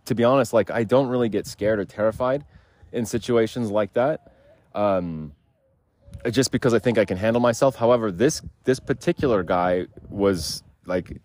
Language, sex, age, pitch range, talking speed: English, male, 30-49, 95-115 Hz, 165 wpm